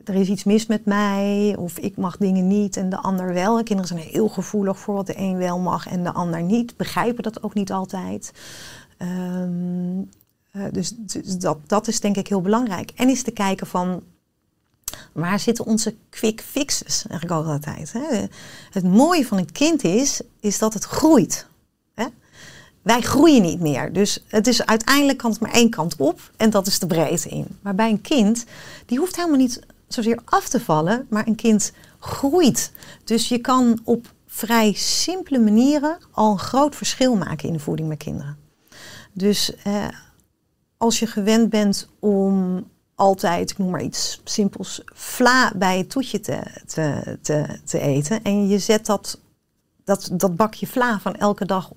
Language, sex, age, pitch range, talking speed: Dutch, female, 30-49, 185-230 Hz, 175 wpm